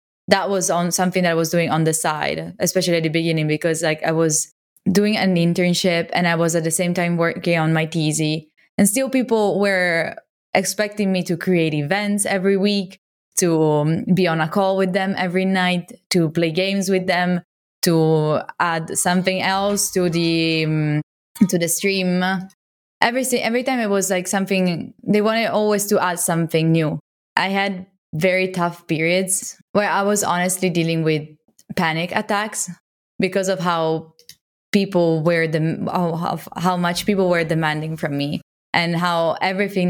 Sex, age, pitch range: female, 20-39, 165-195 Hz